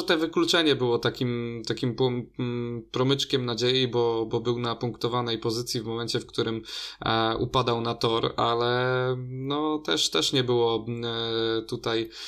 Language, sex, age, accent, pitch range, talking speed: Polish, male, 20-39, native, 115-140 Hz, 150 wpm